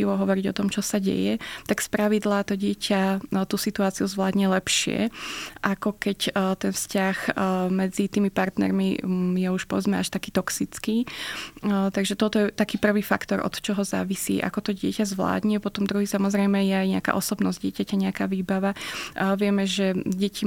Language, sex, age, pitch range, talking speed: Slovak, female, 20-39, 195-205 Hz, 160 wpm